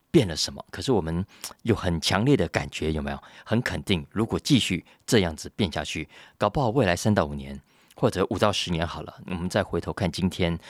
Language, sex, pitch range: Chinese, male, 80-110 Hz